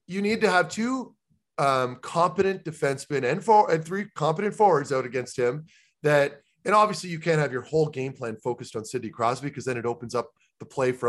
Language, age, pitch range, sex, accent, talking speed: English, 30-49, 125-180 Hz, male, American, 210 wpm